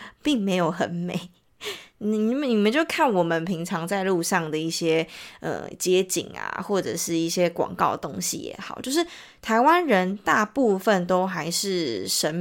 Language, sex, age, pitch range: Chinese, female, 20-39, 170-220 Hz